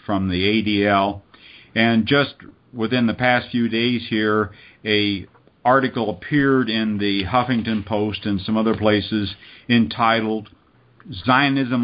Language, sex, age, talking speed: English, male, 50-69, 120 wpm